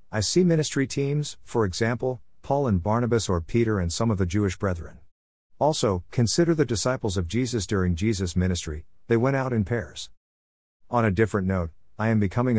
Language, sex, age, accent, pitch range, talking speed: English, male, 50-69, American, 90-115 Hz, 180 wpm